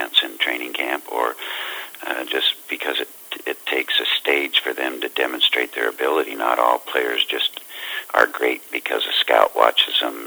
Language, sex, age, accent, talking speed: English, male, 60-79, American, 165 wpm